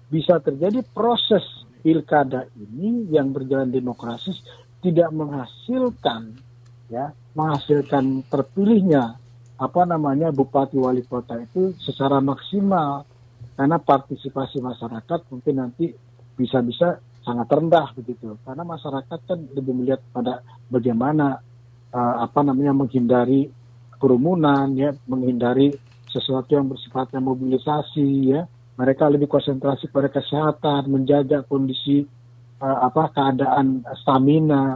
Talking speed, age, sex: 105 wpm, 50-69, male